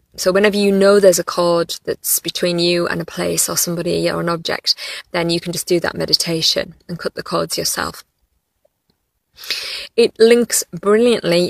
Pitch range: 175-200 Hz